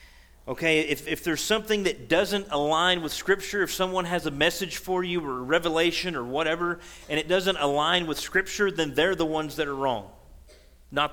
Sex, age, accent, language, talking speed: male, 40-59, American, English, 195 wpm